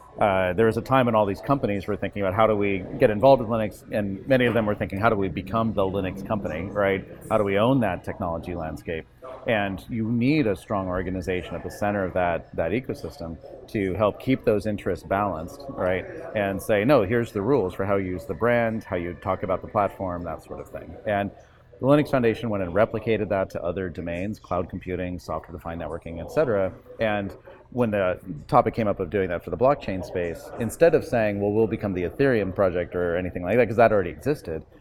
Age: 40-59